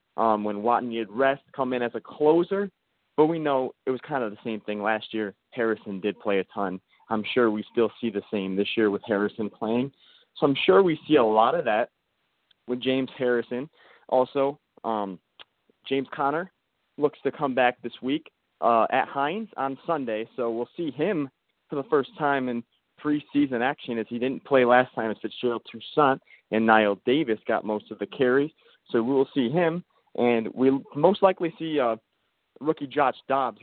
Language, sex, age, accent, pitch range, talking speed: English, male, 30-49, American, 115-140 Hz, 190 wpm